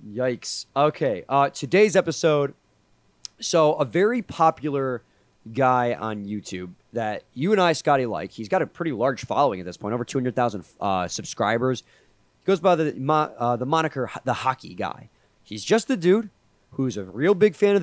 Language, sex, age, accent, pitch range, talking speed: English, male, 30-49, American, 120-160 Hz, 175 wpm